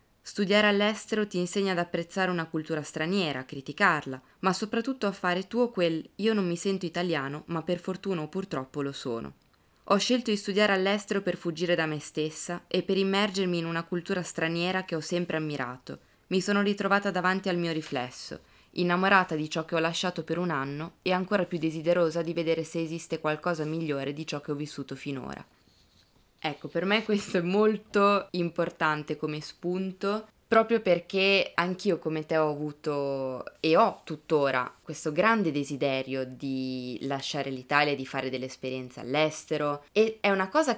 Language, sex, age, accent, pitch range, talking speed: Italian, female, 20-39, native, 150-195 Hz, 170 wpm